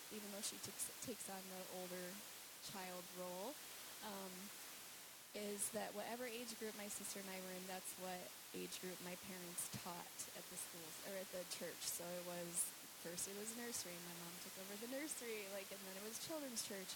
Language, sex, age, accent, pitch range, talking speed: English, female, 10-29, American, 190-240 Hz, 200 wpm